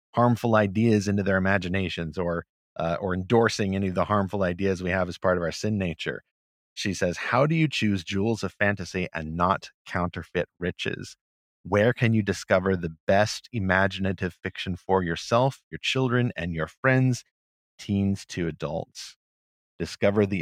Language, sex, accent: English, male, American